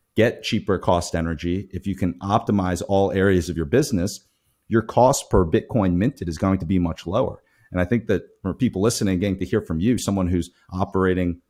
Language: English